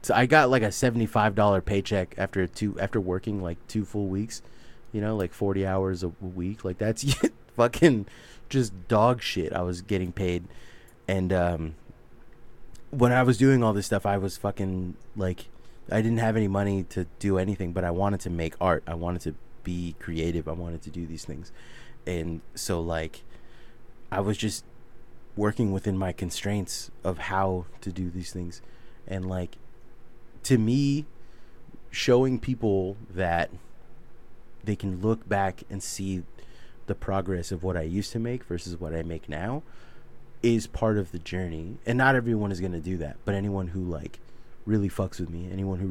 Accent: American